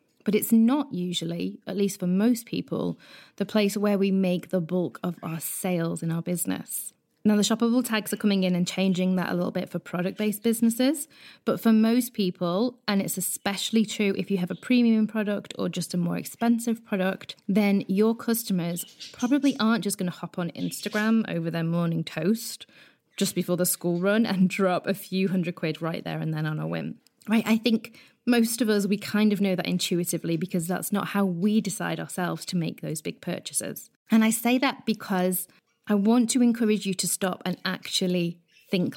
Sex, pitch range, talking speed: female, 175-215 Hz, 200 wpm